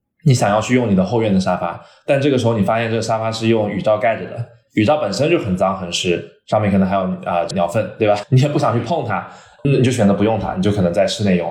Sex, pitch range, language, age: male, 100-135 Hz, Chinese, 20-39